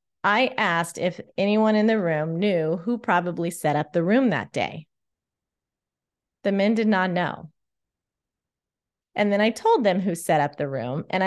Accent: American